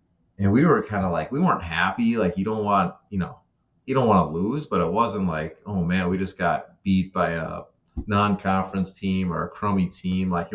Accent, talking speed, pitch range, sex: American, 230 wpm, 90-105 Hz, male